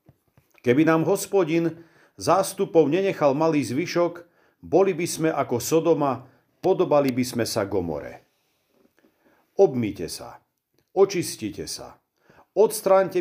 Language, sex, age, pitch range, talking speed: Slovak, male, 50-69, 140-185 Hz, 100 wpm